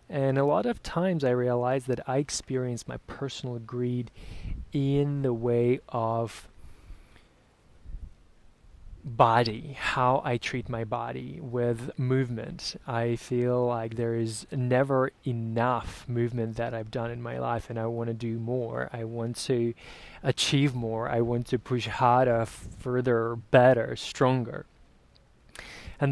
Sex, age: male, 20-39